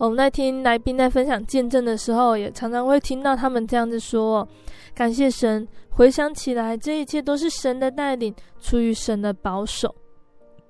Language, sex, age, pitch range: Chinese, female, 20-39, 220-255 Hz